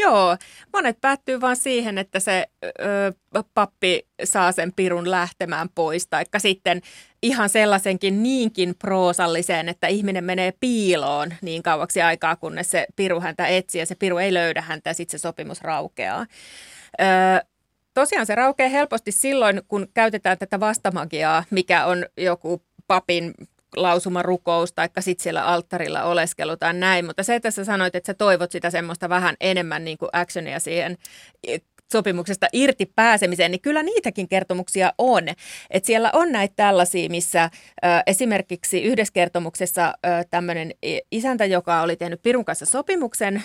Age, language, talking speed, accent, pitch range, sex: 30-49, Finnish, 145 wpm, native, 175-210 Hz, female